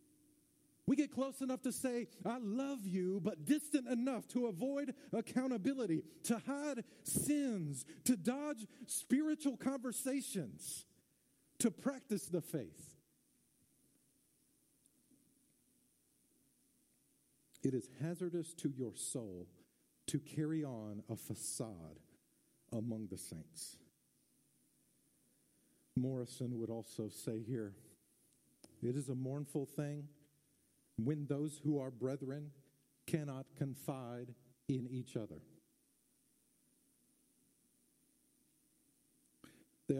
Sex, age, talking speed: male, 50-69, 90 wpm